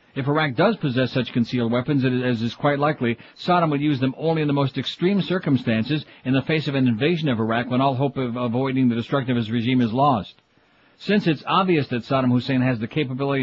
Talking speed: 225 wpm